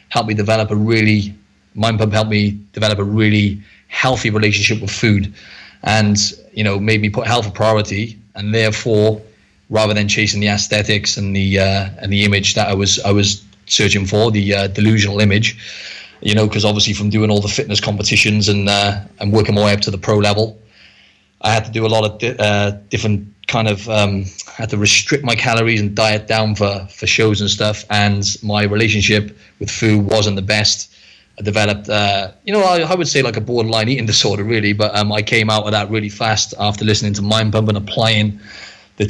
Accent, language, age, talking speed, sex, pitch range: British, English, 30-49, 210 wpm, male, 105-110 Hz